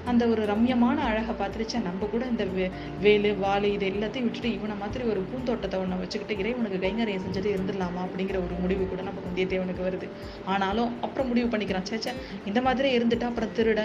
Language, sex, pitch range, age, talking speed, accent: Tamil, female, 190-220 Hz, 20-39, 180 wpm, native